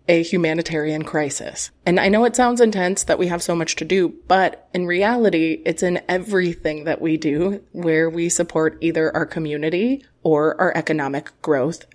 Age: 20-39